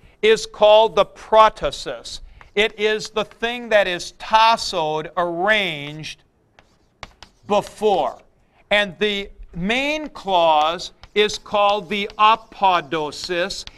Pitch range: 160-210 Hz